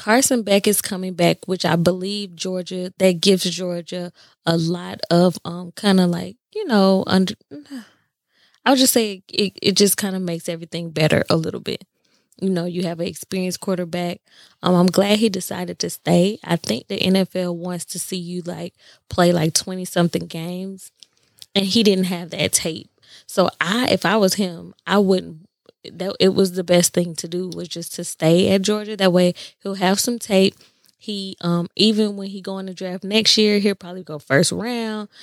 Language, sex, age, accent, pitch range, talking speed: English, female, 20-39, American, 175-200 Hz, 195 wpm